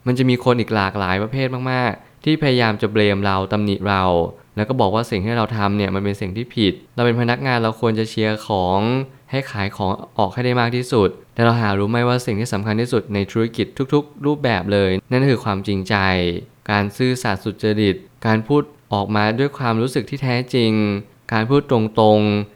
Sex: male